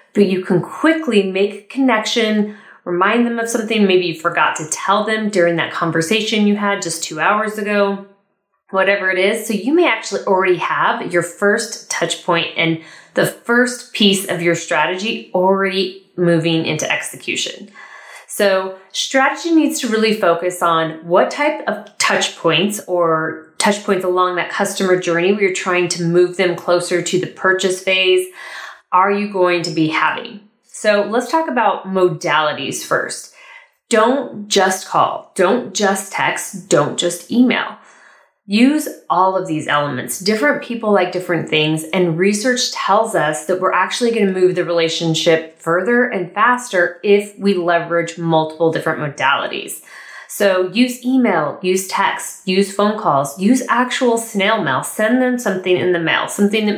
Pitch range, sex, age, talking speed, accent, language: 175-220 Hz, female, 30-49, 160 wpm, American, English